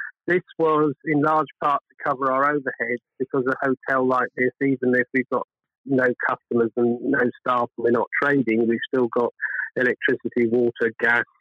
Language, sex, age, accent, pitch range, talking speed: English, male, 50-69, British, 115-135 Hz, 175 wpm